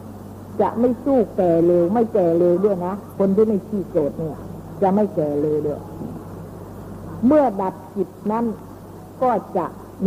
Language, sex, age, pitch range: Thai, female, 60-79, 170-230 Hz